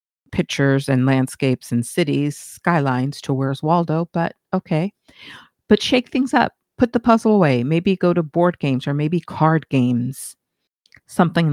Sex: female